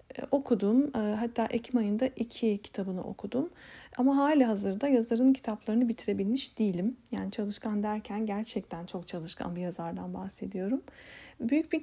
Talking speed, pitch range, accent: 125 wpm, 215-265 Hz, native